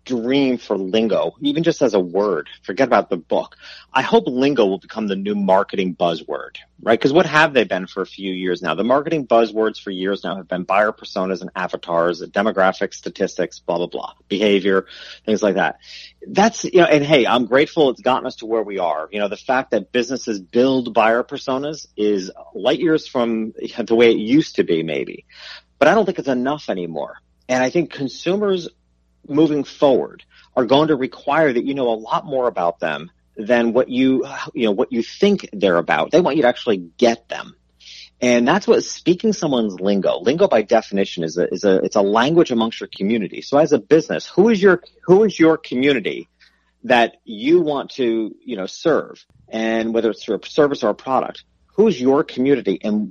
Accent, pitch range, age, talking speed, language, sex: American, 105-150 Hz, 40-59, 200 wpm, English, male